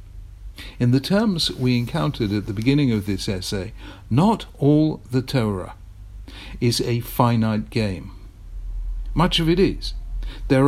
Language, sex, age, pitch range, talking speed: English, male, 60-79, 100-140 Hz, 135 wpm